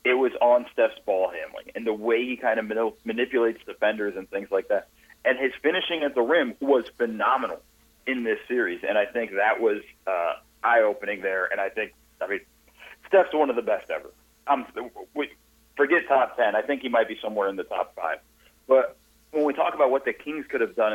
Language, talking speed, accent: English, 210 wpm, American